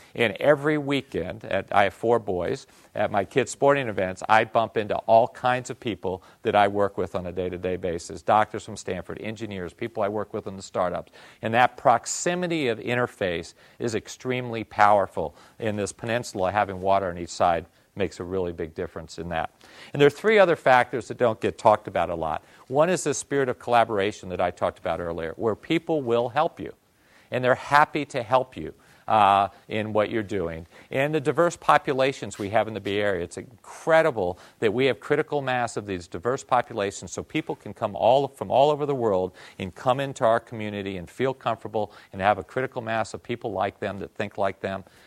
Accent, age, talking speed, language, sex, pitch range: American, 50-69, 205 wpm, English, male, 100-135 Hz